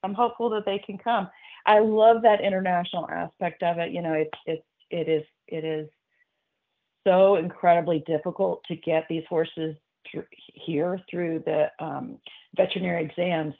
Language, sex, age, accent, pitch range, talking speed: English, female, 40-59, American, 155-195 Hz, 155 wpm